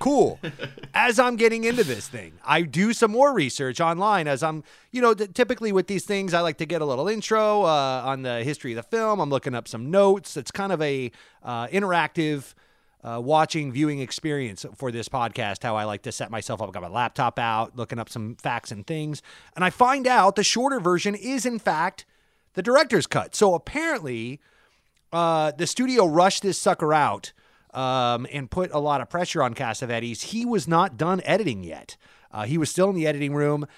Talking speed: 205 wpm